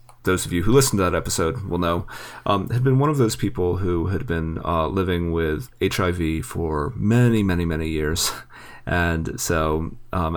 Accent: American